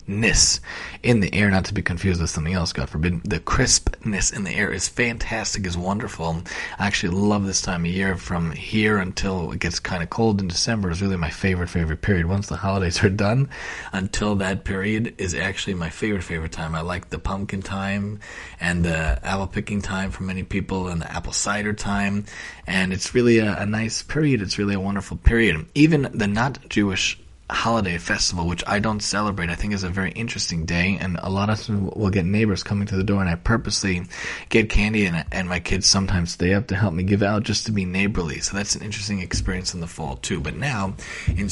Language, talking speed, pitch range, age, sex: English, 215 wpm, 90-105 Hz, 30-49, male